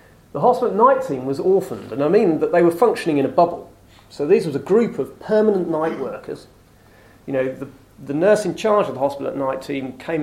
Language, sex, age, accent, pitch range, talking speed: English, male, 30-49, British, 130-190 Hz, 235 wpm